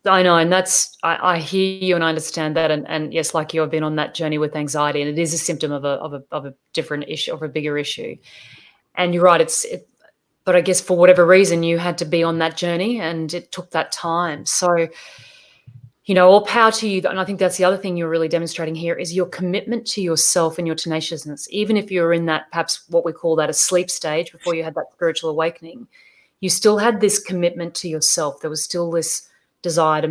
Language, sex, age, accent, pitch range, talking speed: English, female, 30-49, Australian, 160-180 Hz, 245 wpm